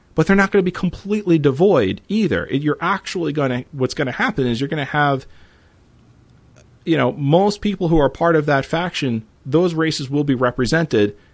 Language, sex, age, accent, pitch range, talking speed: English, male, 40-59, American, 110-155 Hz, 195 wpm